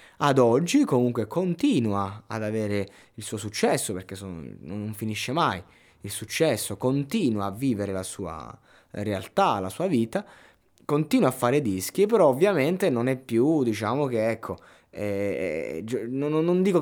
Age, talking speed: 20-39, 140 wpm